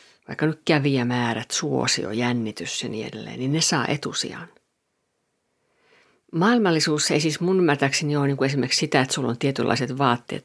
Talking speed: 155 wpm